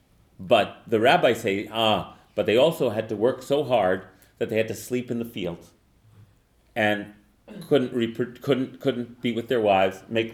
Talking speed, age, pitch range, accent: 175 wpm, 40-59, 105-155 Hz, American